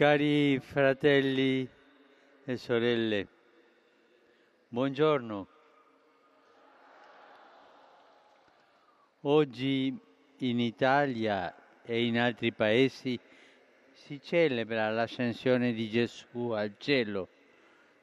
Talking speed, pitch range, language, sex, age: 65 wpm, 115-140 Hz, Italian, male, 50-69